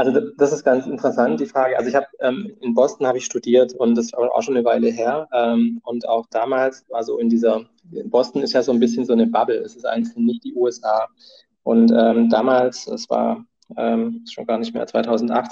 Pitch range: 115-145 Hz